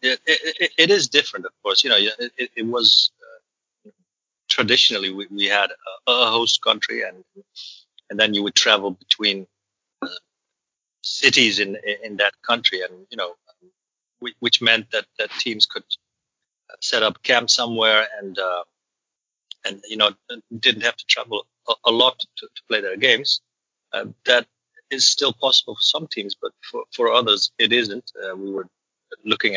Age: 30-49